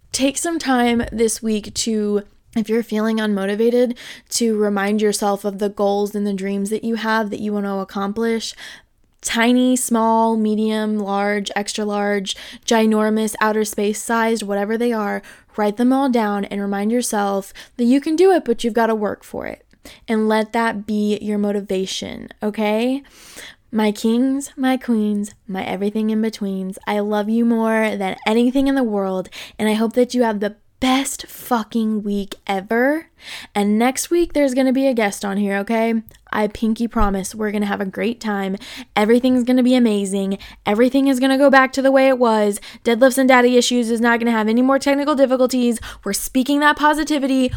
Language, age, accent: English, 10-29, American